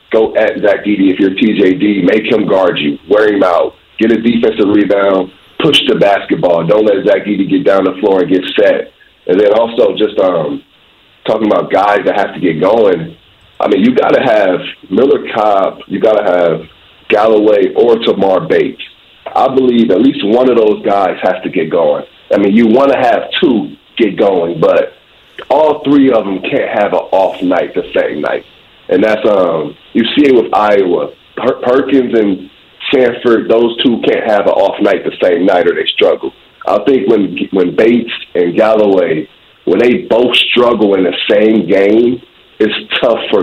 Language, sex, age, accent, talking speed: English, male, 40-59, American, 190 wpm